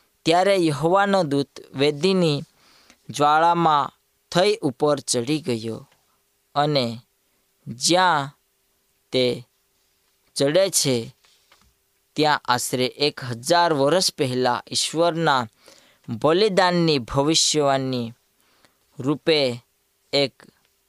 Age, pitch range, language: 20-39, 130-160 Hz, Gujarati